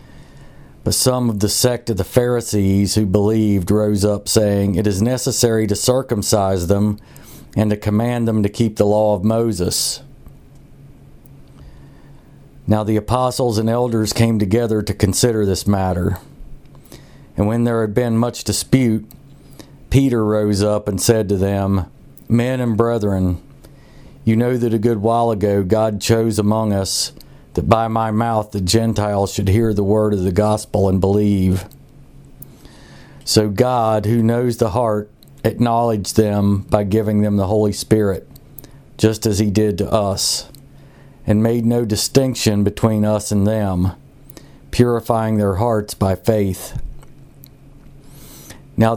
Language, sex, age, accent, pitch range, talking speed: English, male, 50-69, American, 105-120 Hz, 145 wpm